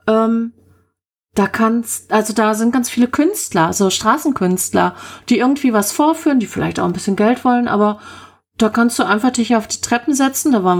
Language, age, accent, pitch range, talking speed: German, 30-49, German, 190-240 Hz, 190 wpm